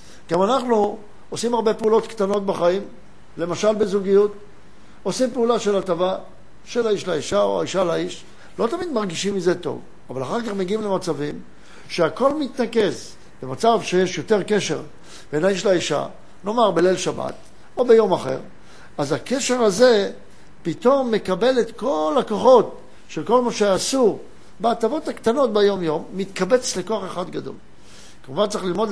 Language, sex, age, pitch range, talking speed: Hebrew, male, 60-79, 180-230 Hz, 135 wpm